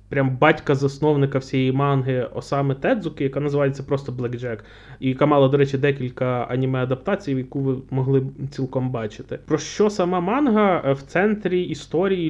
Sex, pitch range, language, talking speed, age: male, 140-170 Hz, Ukrainian, 145 wpm, 20-39